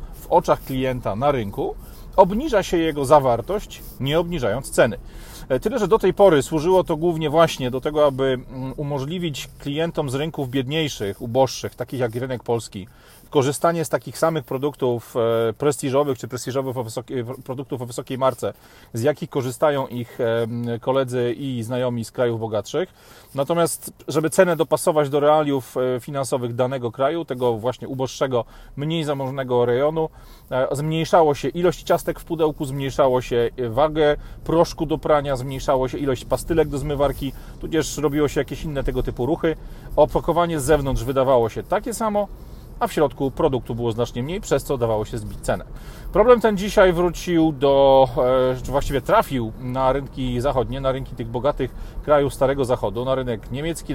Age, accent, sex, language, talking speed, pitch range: 40-59, native, male, Polish, 150 wpm, 125-155 Hz